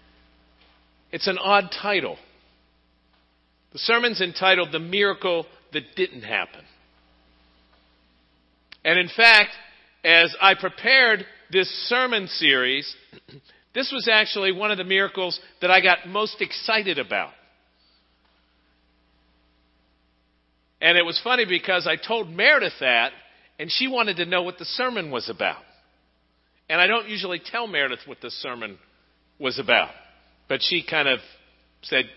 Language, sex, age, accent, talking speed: English, male, 50-69, American, 130 wpm